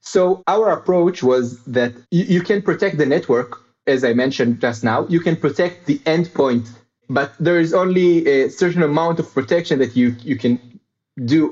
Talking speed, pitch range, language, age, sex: 180 wpm, 135-190 Hz, English, 30-49, male